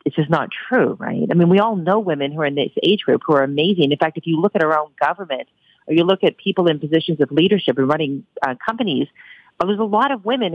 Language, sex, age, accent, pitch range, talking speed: English, female, 40-59, American, 150-190 Hz, 275 wpm